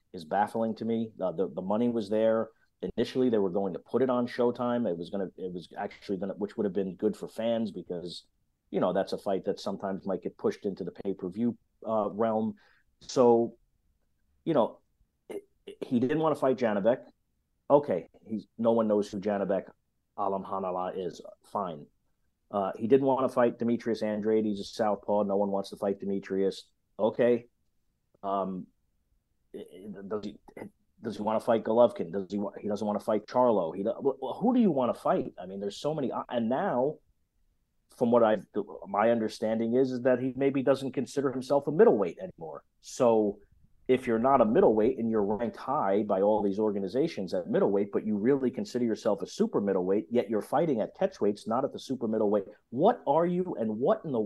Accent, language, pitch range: American, English, 100-125 Hz